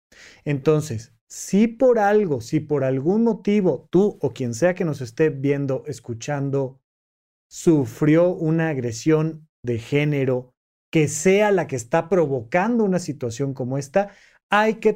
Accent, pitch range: Mexican, 140-190 Hz